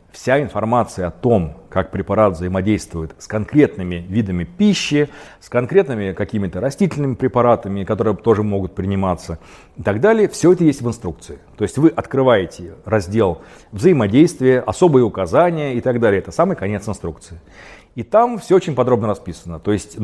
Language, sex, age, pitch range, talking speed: Russian, male, 40-59, 95-145 Hz, 155 wpm